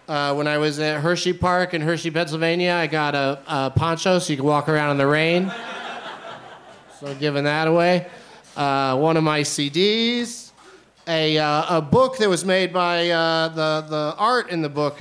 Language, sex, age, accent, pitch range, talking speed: English, male, 40-59, American, 140-175 Hz, 190 wpm